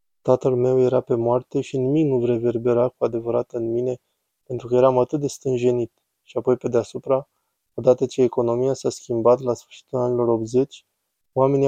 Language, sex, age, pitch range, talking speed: Romanian, male, 20-39, 120-130 Hz, 170 wpm